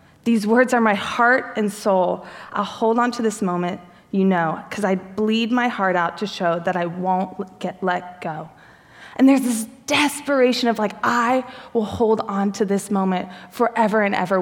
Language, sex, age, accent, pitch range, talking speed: English, female, 20-39, American, 210-255 Hz, 185 wpm